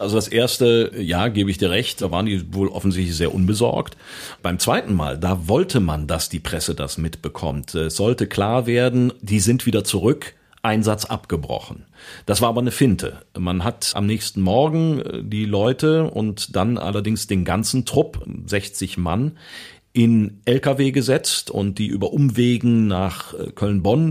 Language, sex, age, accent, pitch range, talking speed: German, male, 40-59, German, 95-120 Hz, 160 wpm